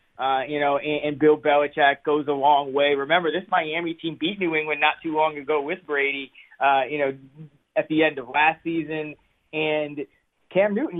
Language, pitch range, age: English, 150-180 Hz, 20-39